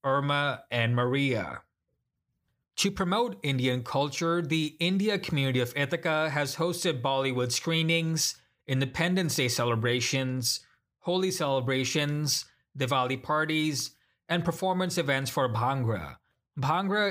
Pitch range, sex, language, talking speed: 135-170 Hz, male, English, 100 wpm